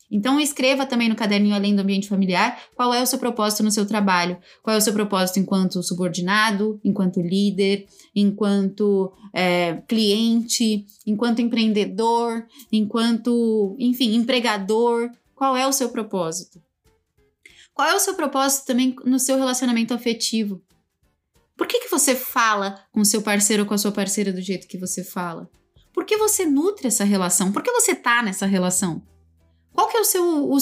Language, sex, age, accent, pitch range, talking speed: Portuguese, female, 20-39, Brazilian, 205-255 Hz, 165 wpm